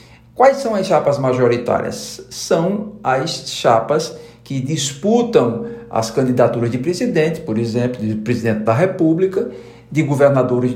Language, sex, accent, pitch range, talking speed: Portuguese, male, Brazilian, 125-200 Hz, 125 wpm